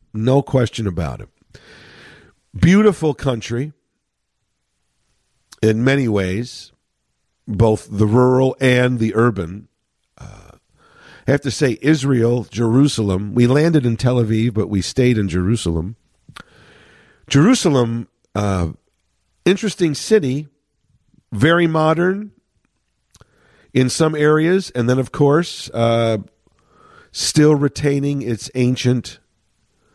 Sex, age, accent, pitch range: male, 50-69, American, 105-140 Hz